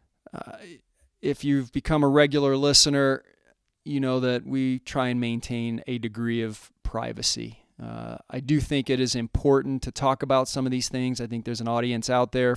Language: English